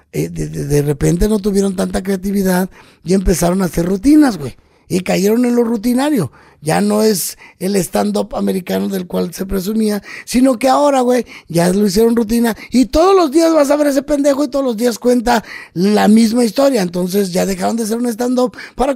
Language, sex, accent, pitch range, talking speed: Spanish, male, Mexican, 165-225 Hz, 195 wpm